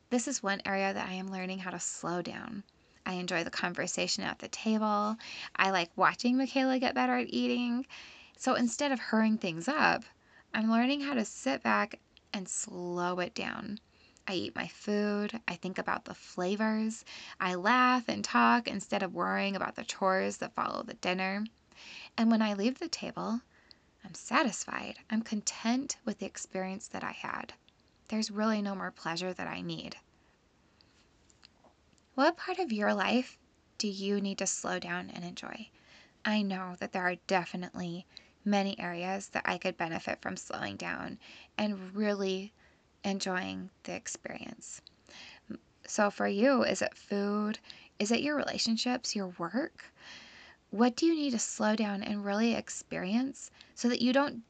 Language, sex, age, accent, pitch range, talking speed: English, female, 10-29, American, 185-235 Hz, 165 wpm